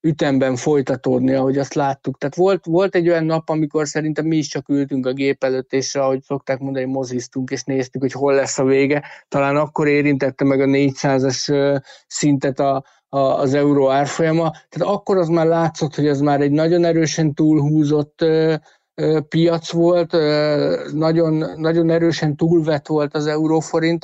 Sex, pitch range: male, 140-170 Hz